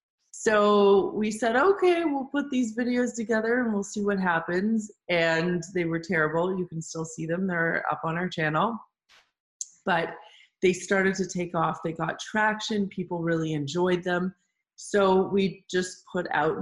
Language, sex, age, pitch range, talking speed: English, female, 20-39, 165-210 Hz, 165 wpm